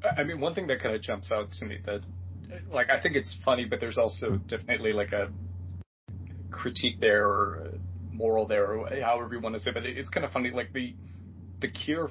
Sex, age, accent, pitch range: male, 30-49, American, 90-120 Hz